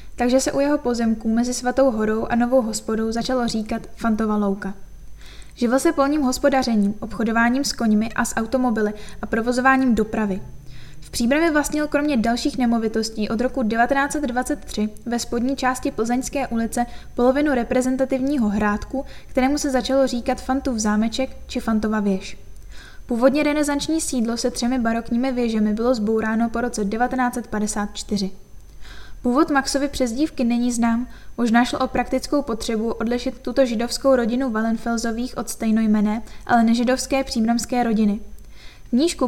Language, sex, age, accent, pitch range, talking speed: Czech, female, 10-29, native, 225-265 Hz, 135 wpm